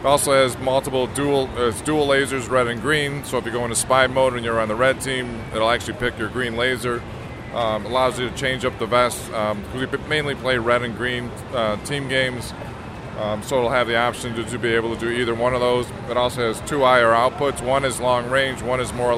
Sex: male